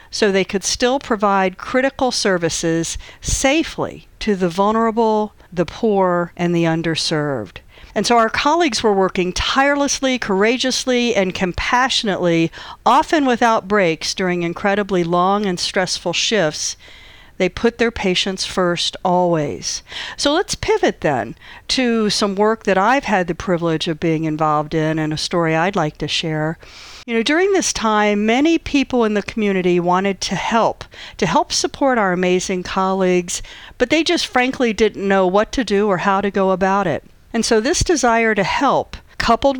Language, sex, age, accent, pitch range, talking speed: English, female, 50-69, American, 180-245 Hz, 160 wpm